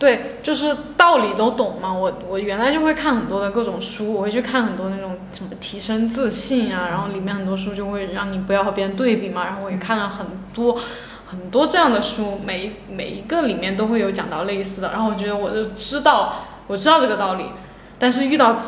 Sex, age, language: female, 10-29, Chinese